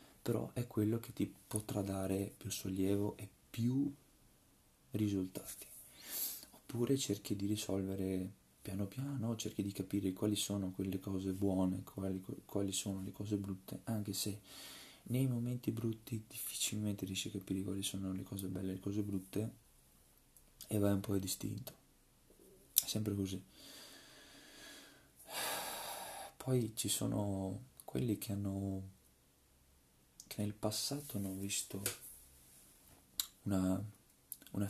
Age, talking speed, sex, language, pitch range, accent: 20-39, 125 wpm, male, Italian, 95-115 Hz, native